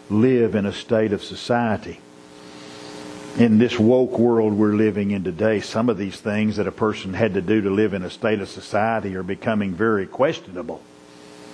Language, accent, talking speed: English, American, 180 wpm